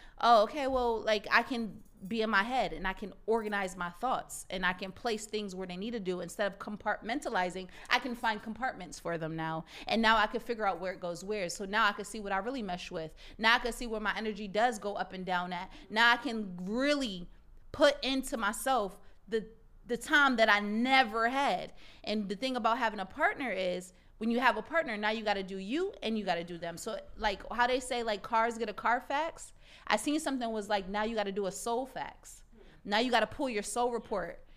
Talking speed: 240 wpm